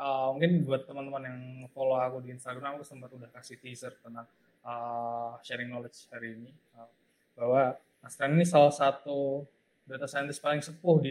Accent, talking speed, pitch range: native, 165 wpm, 125-140 Hz